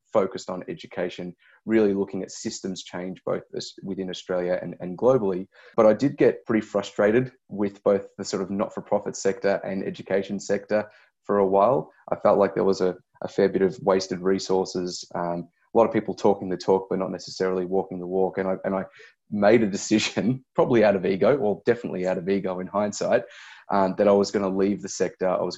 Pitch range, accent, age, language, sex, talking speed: 95-100 Hz, Australian, 20-39, English, male, 200 wpm